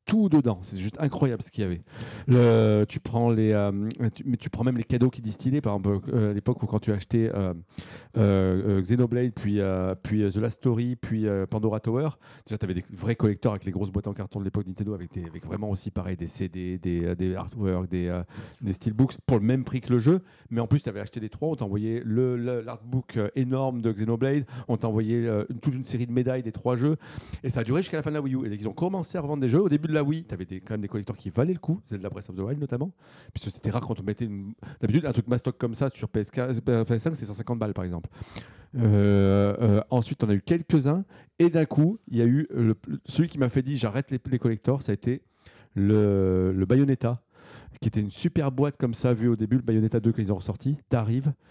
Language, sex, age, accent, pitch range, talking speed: French, male, 40-59, French, 105-135 Hz, 255 wpm